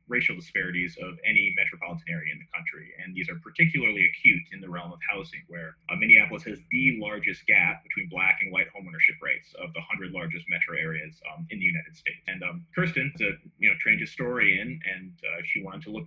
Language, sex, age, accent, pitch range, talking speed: English, male, 30-49, American, 110-170 Hz, 215 wpm